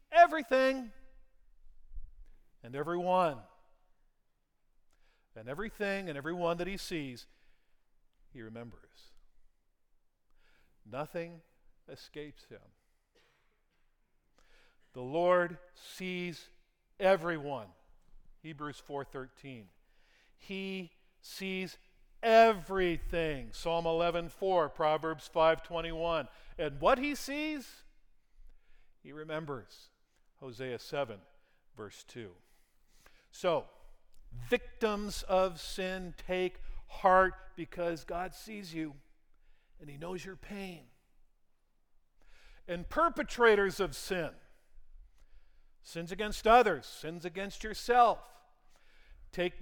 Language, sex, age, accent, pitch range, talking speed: English, male, 50-69, American, 140-195 Hz, 75 wpm